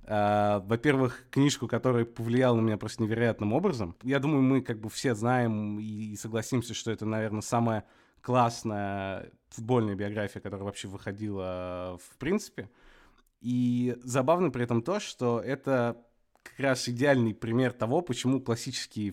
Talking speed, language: 140 wpm, Russian